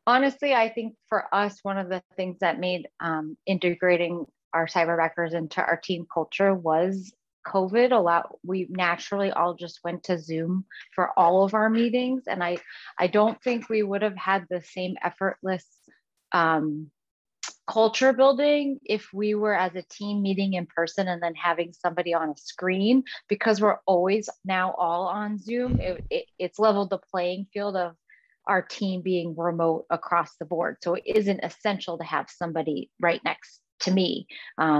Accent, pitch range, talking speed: American, 175-205 Hz, 170 wpm